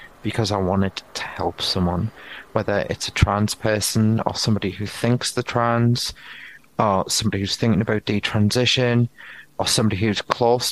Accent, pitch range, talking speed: British, 105-125 Hz, 150 wpm